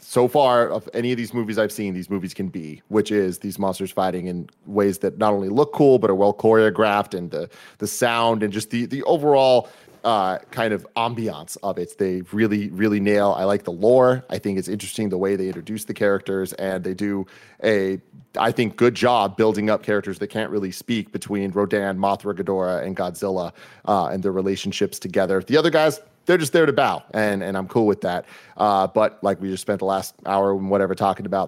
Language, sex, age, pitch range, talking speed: English, male, 30-49, 95-115 Hz, 220 wpm